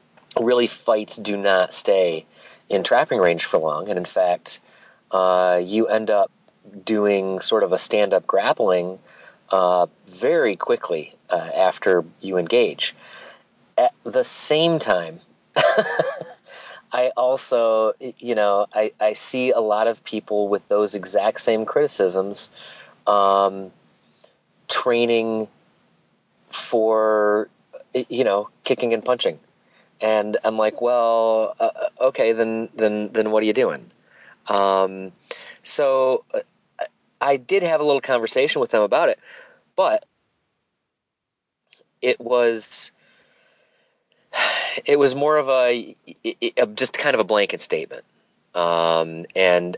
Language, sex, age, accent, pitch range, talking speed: English, male, 30-49, American, 100-155 Hz, 125 wpm